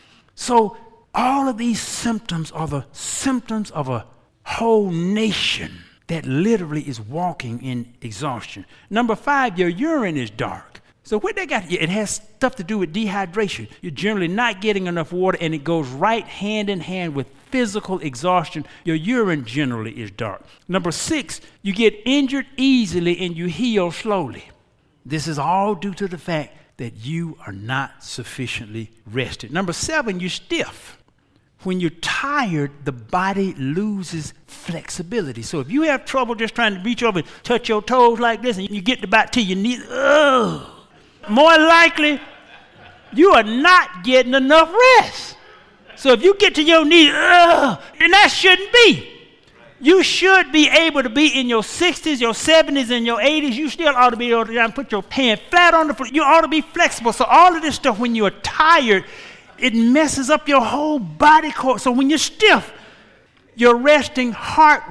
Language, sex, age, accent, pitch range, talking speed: English, male, 60-79, American, 165-275 Hz, 175 wpm